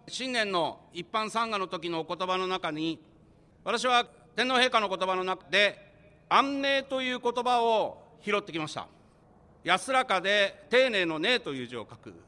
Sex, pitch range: male, 175-235 Hz